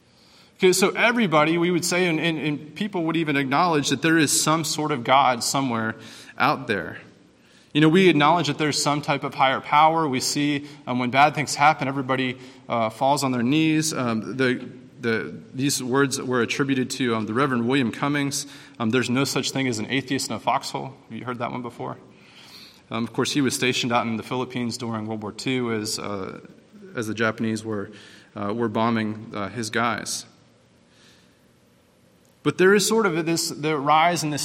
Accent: American